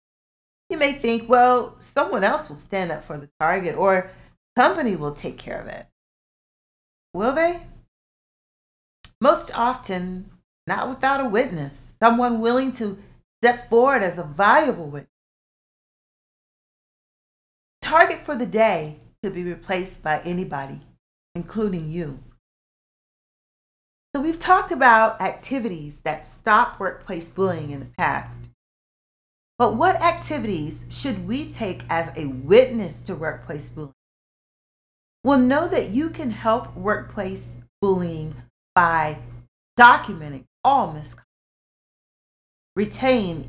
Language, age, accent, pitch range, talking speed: English, 40-59, American, 155-245 Hz, 115 wpm